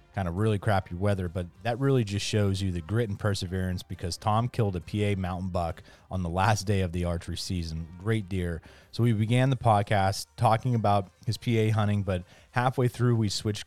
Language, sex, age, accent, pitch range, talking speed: English, male, 30-49, American, 90-110 Hz, 205 wpm